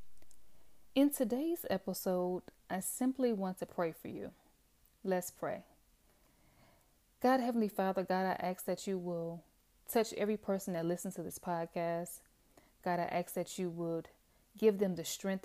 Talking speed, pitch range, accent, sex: 150 wpm, 170-195 Hz, American, female